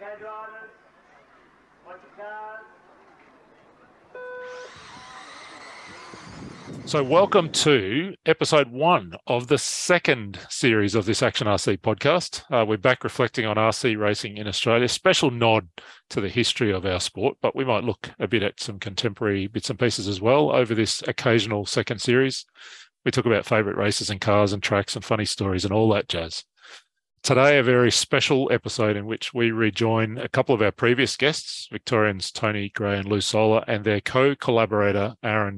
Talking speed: 155 wpm